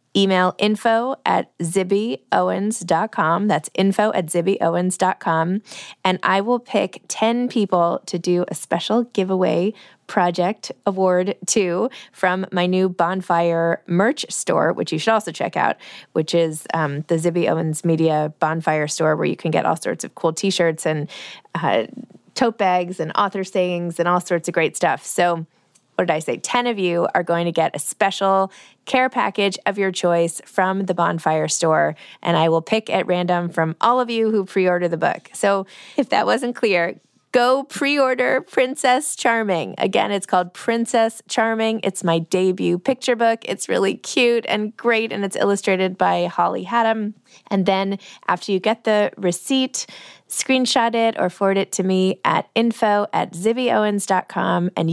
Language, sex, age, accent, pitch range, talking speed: English, female, 20-39, American, 175-225 Hz, 165 wpm